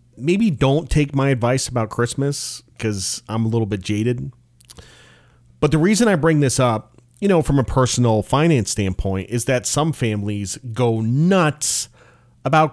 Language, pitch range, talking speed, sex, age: English, 105-140 Hz, 160 wpm, male, 30-49